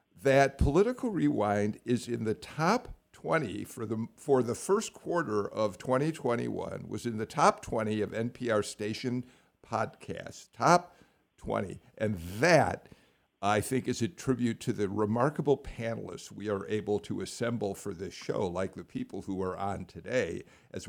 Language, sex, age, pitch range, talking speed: English, male, 60-79, 100-125 Hz, 150 wpm